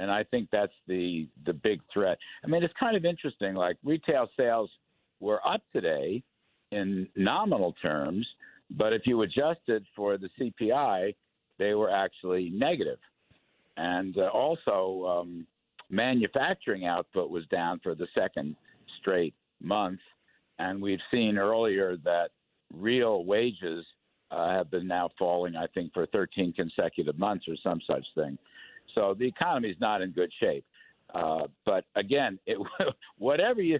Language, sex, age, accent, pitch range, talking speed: English, male, 60-79, American, 95-125 Hz, 145 wpm